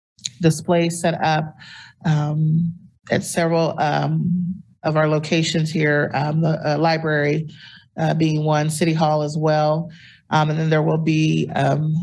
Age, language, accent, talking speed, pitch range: 40-59, English, American, 140 wpm, 145-160 Hz